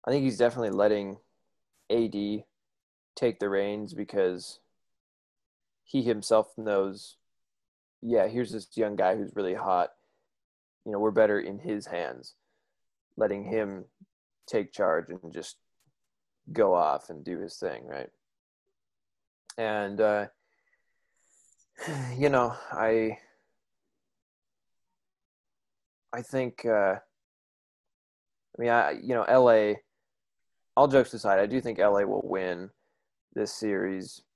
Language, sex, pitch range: English, male, 95-120 Hz